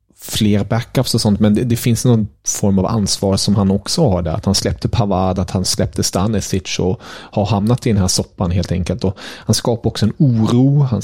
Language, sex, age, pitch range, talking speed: Swedish, male, 30-49, 95-120 Hz, 225 wpm